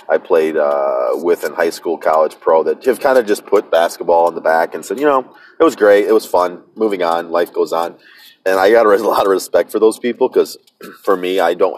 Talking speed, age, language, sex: 250 wpm, 30-49, English, male